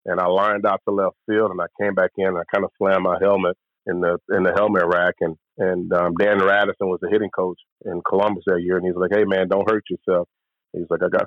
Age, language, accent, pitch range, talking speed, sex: 30-49, English, American, 90-105 Hz, 265 wpm, male